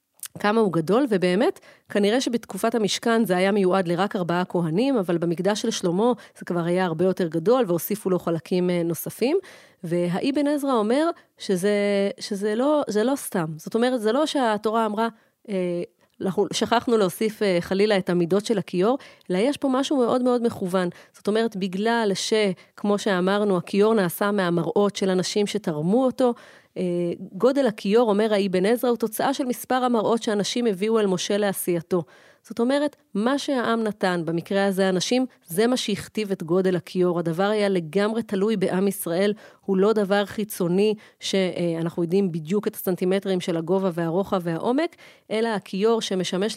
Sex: female